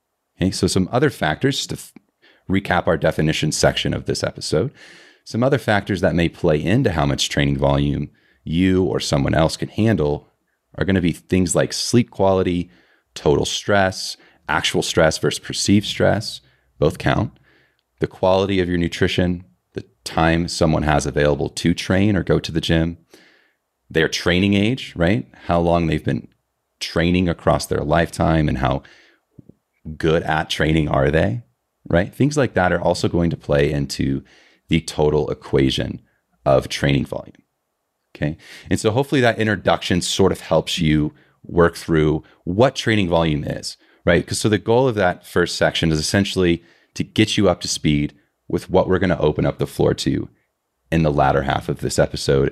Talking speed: 170 wpm